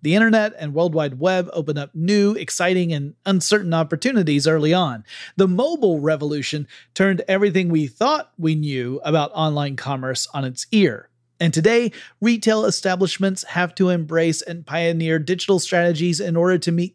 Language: English